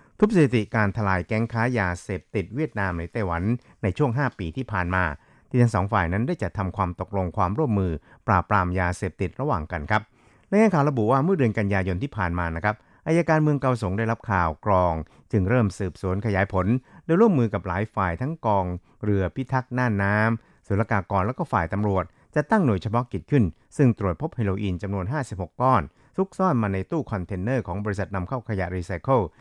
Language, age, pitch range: Thai, 60-79, 95-125 Hz